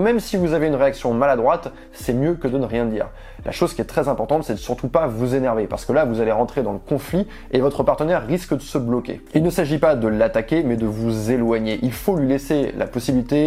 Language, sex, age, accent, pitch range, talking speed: French, male, 20-39, French, 115-150 Hz, 260 wpm